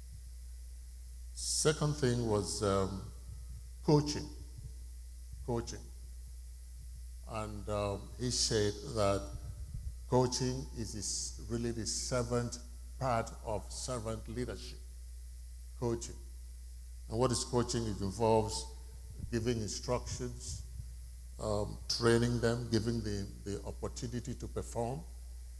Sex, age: male, 50-69